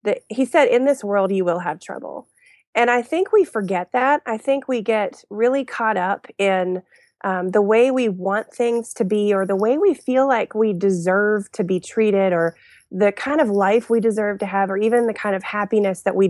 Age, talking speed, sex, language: 30-49, 220 wpm, female, English